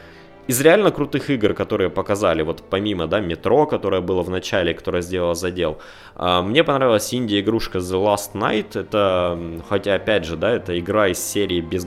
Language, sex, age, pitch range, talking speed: Russian, male, 20-39, 90-115 Hz, 170 wpm